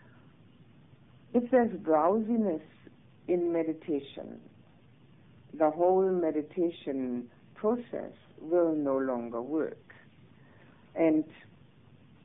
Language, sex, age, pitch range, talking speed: English, female, 60-79, 135-190 Hz, 70 wpm